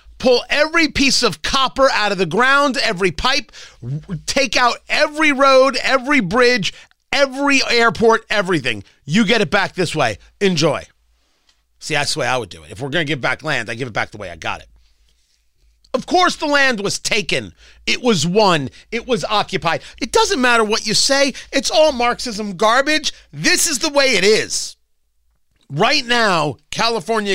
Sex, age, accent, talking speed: male, 40-59, American, 180 wpm